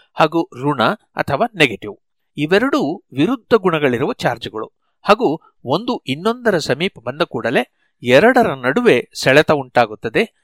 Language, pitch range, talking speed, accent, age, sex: Kannada, 130-200 Hz, 105 wpm, native, 60-79, male